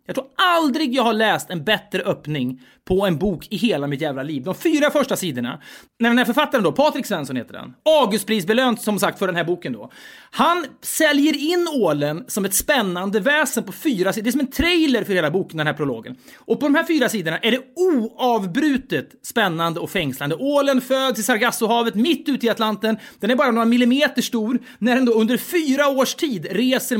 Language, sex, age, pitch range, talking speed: Swedish, male, 30-49, 205-280 Hz, 210 wpm